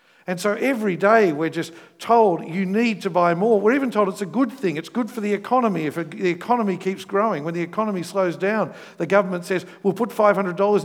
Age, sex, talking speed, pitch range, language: 50-69, male, 225 wpm, 160-210 Hz, English